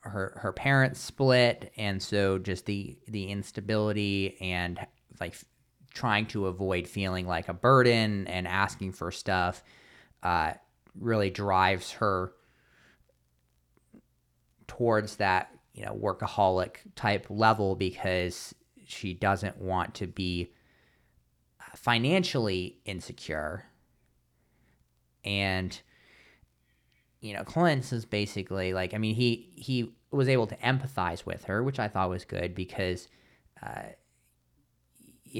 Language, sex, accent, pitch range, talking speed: English, male, American, 90-115 Hz, 115 wpm